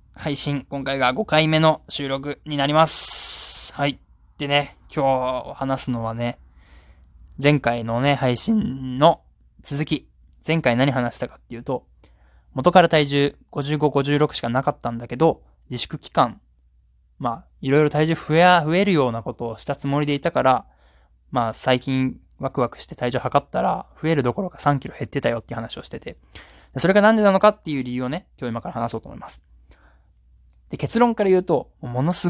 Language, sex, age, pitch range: Japanese, male, 20-39, 110-155 Hz